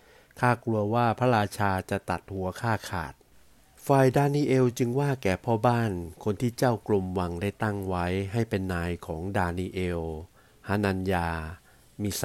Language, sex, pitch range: Thai, male, 90-115 Hz